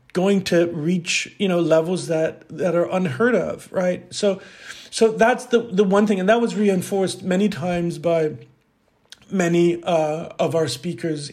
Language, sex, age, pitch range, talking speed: English, male, 40-59, 160-195 Hz, 165 wpm